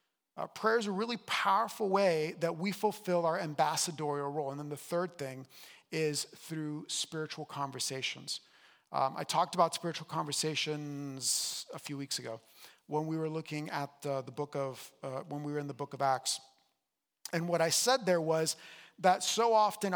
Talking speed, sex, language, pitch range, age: 175 wpm, male, English, 150-190 Hz, 40-59